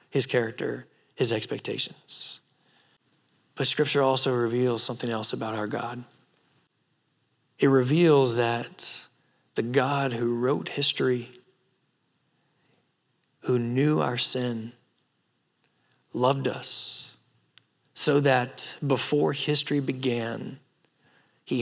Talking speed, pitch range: 90 wpm, 130-180 Hz